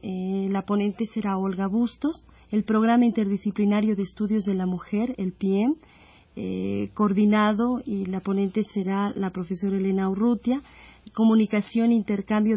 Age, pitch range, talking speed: 40-59, 200-235 Hz, 135 wpm